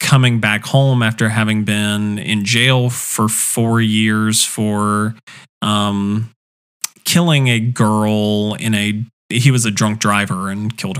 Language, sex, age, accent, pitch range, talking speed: English, male, 20-39, American, 105-125 Hz, 135 wpm